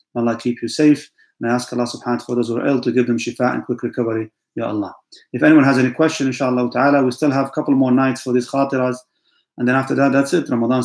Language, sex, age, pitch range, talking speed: English, male, 30-49, 120-150 Hz, 270 wpm